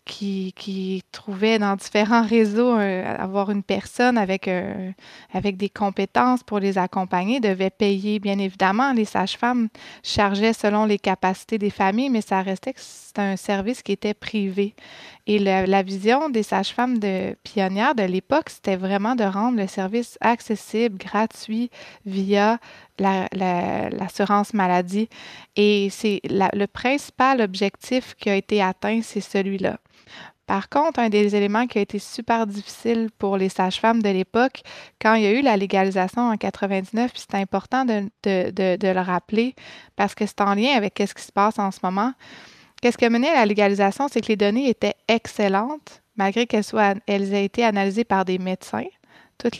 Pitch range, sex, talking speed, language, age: 195-230 Hz, female, 175 wpm, French, 20-39